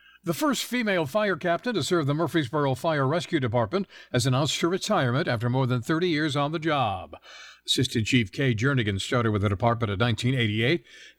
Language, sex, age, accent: English, male, 50-69, American